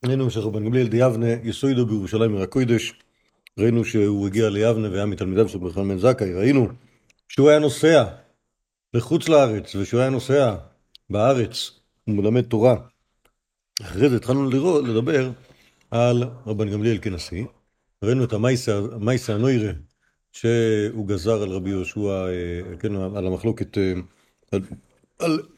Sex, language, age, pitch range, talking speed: male, Hebrew, 50-69, 100-125 Hz, 120 wpm